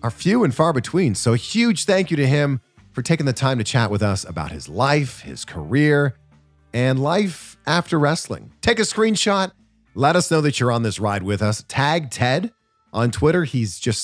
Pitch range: 110-160 Hz